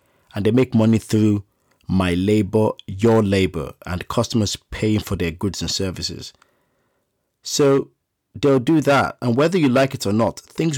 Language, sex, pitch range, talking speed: English, male, 95-125 Hz, 160 wpm